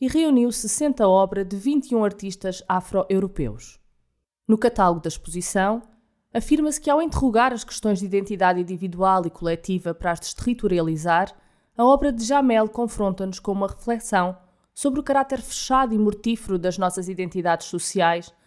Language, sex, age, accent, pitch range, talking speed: Portuguese, female, 20-39, Brazilian, 175-230 Hz, 145 wpm